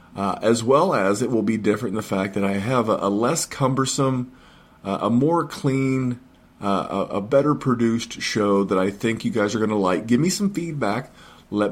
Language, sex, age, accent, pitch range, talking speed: English, male, 40-59, American, 100-120 Hz, 215 wpm